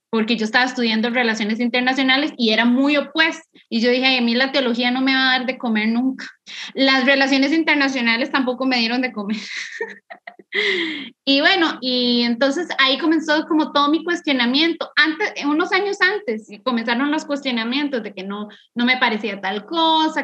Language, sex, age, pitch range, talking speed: Spanish, female, 20-39, 235-300 Hz, 170 wpm